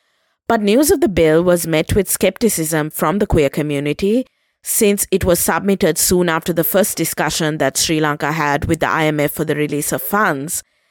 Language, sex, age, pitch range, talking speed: English, female, 20-39, 155-195 Hz, 185 wpm